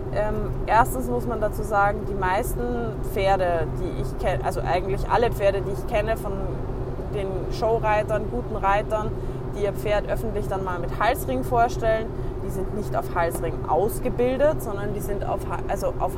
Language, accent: German, German